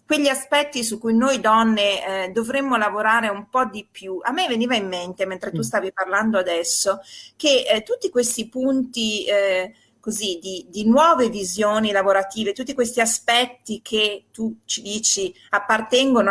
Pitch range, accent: 195-240 Hz, native